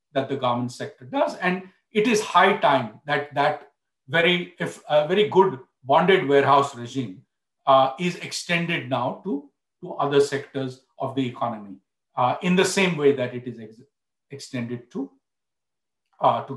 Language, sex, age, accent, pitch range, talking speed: English, male, 50-69, Indian, 135-175 Hz, 160 wpm